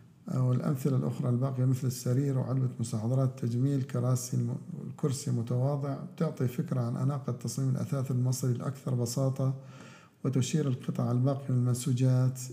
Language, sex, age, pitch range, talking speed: Arabic, male, 50-69, 120-140 Hz, 125 wpm